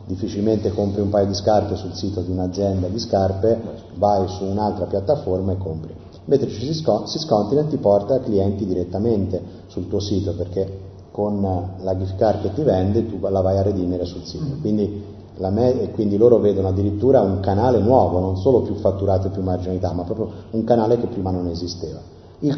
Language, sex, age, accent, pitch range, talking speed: Italian, male, 30-49, native, 95-115 Hz, 190 wpm